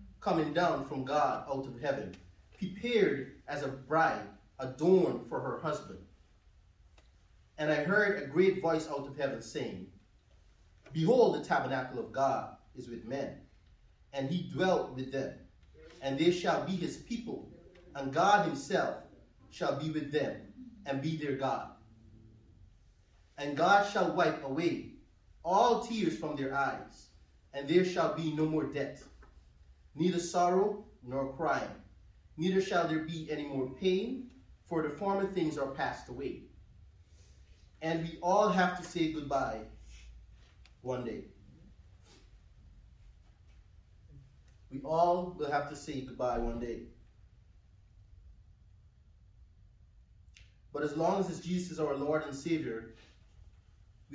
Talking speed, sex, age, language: 130 wpm, male, 30-49, English